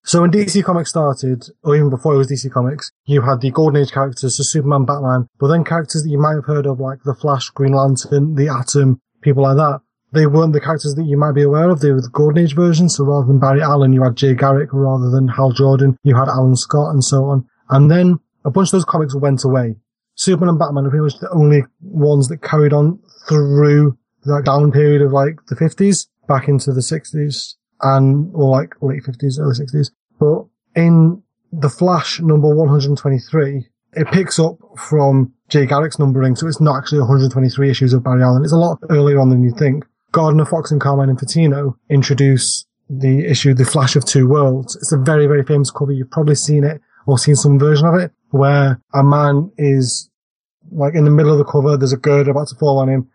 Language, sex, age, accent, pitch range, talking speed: English, male, 30-49, British, 135-150 Hz, 220 wpm